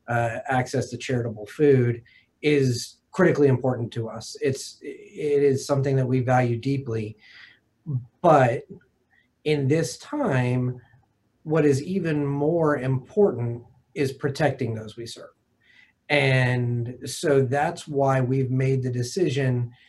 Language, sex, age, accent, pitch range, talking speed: English, male, 30-49, American, 120-140 Hz, 120 wpm